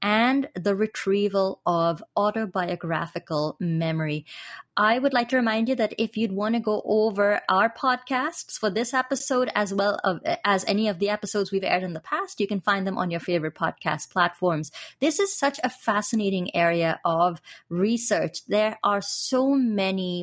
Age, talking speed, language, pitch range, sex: 30-49, 170 wpm, English, 185-240 Hz, female